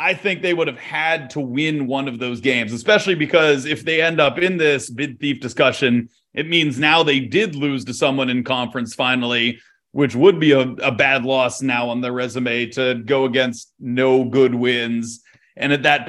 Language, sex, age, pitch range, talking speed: English, male, 30-49, 125-155 Hz, 200 wpm